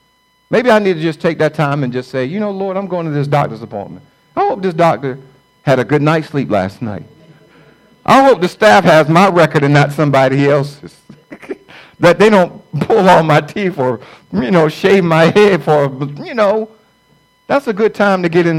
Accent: American